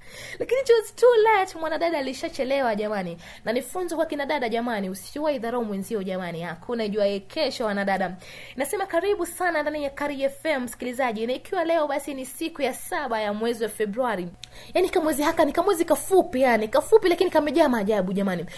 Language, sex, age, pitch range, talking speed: Swahili, female, 20-39, 230-315 Hz, 175 wpm